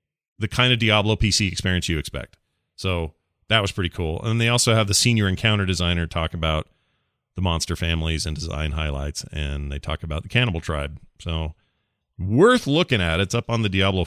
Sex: male